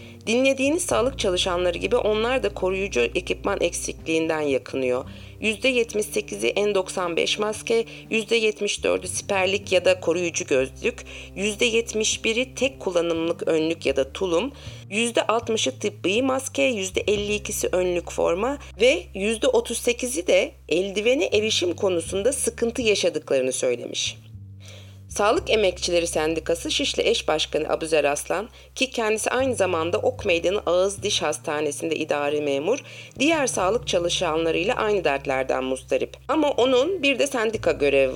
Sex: female